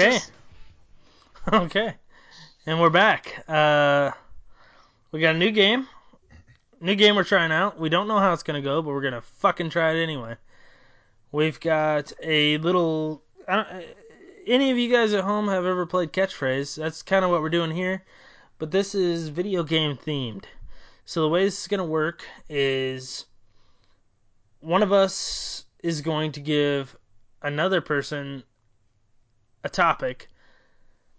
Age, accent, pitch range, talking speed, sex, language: 20-39, American, 130-170 Hz, 150 wpm, male, English